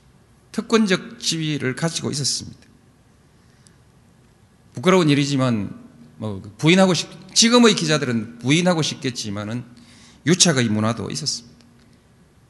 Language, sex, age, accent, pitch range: Korean, male, 40-59, native, 115-180 Hz